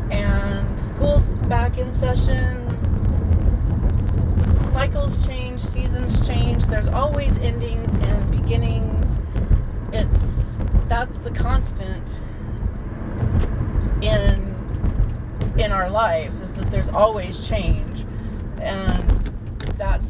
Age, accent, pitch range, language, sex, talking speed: 30-49, American, 90-110 Hz, English, female, 85 wpm